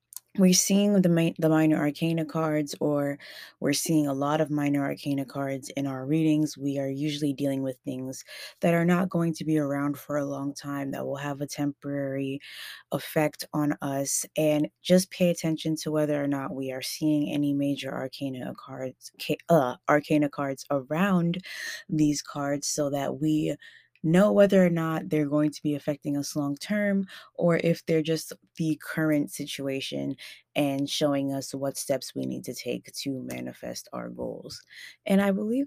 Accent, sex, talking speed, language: American, female, 175 wpm, English